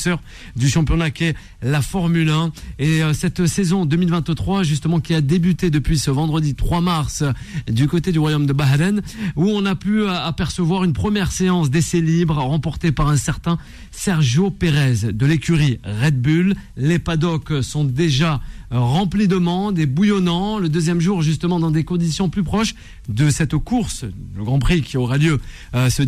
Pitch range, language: 150-190 Hz, French